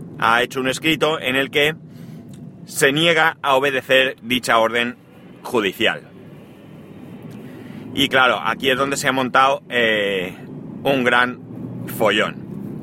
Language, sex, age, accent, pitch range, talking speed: Spanish, male, 30-49, Spanish, 120-155 Hz, 120 wpm